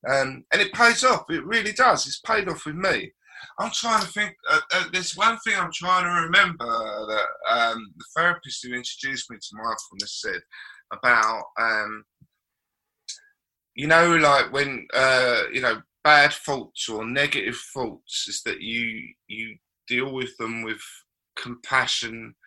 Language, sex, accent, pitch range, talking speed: English, male, British, 125-210 Hz, 160 wpm